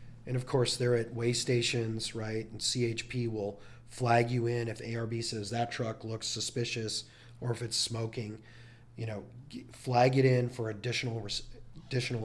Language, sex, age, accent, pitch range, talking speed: English, male, 30-49, American, 110-125 Hz, 160 wpm